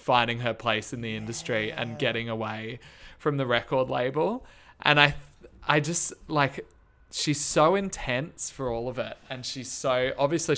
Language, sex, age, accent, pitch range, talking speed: English, male, 20-39, Australian, 110-140 Hz, 165 wpm